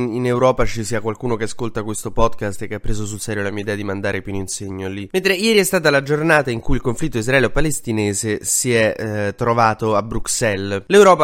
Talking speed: 225 wpm